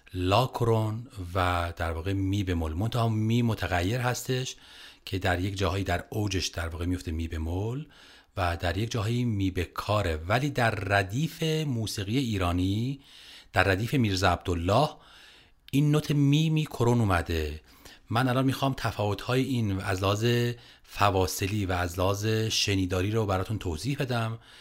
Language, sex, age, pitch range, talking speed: Persian, male, 40-59, 95-120 Hz, 145 wpm